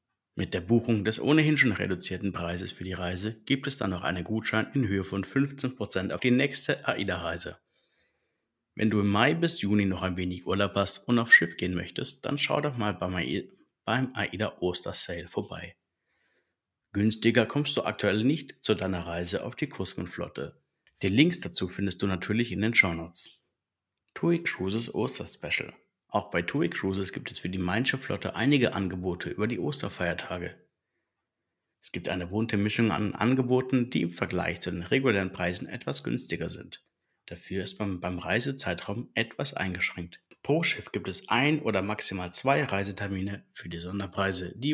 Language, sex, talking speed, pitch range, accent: German, male, 170 wpm, 95-125 Hz, German